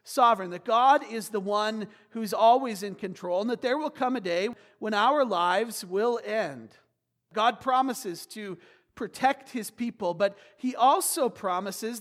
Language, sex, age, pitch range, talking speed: English, male, 40-59, 190-235 Hz, 160 wpm